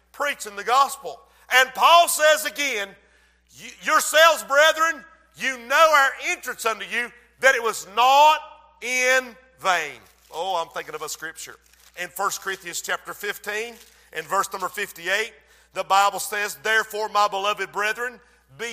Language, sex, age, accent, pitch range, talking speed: English, male, 50-69, American, 200-270 Hz, 140 wpm